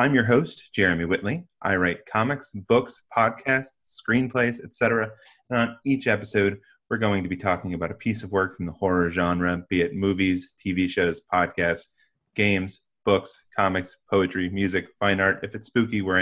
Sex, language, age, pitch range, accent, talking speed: male, English, 30-49, 90-110 Hz, American, 175 wpm